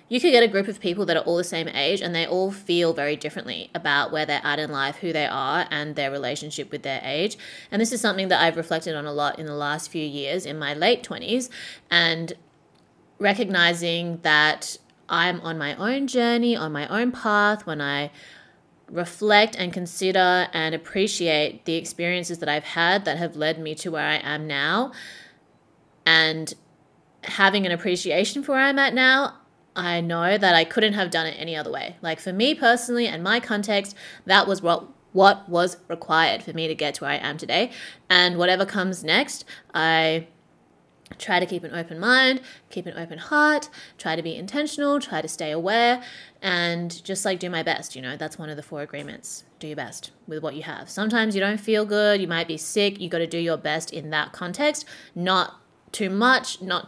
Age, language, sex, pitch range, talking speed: 20-39, English, female, 160-205 Hz, 205 wpm